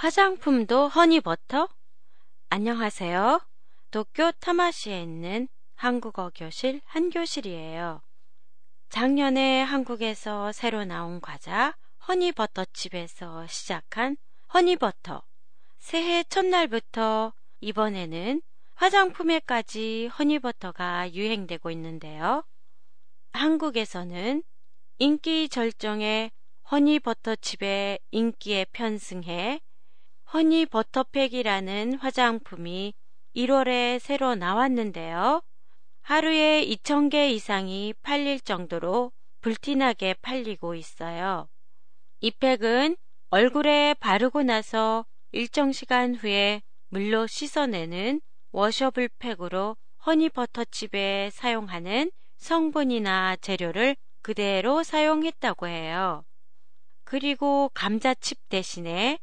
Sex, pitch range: female, 200-285 Hz